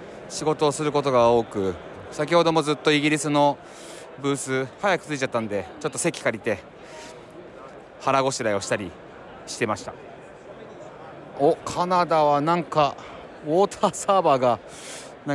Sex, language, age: male, Japanese, 30-49